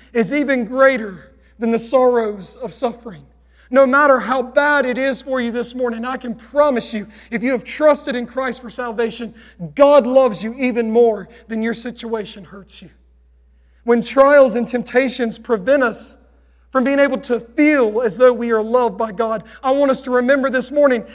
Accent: American